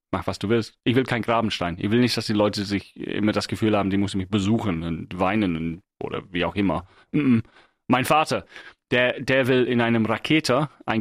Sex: male